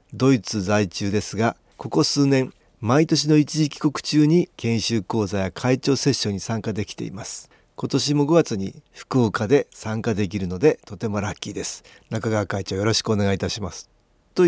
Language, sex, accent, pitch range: Japanese, male, native, 105-150 Hz